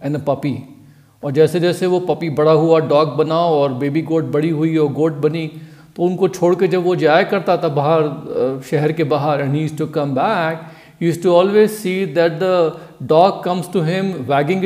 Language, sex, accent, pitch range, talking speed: Hindi, male, native, 155-190 Hz, 200 wpm